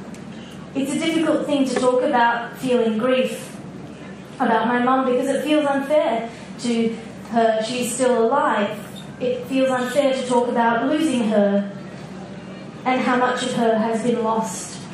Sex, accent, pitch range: female, Australian, 210-235 Hz